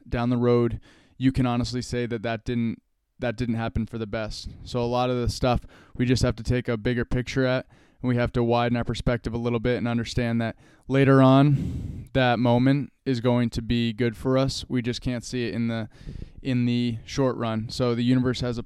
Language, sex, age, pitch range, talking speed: English, male, 20-39, 115-125 Hz, 230 wpm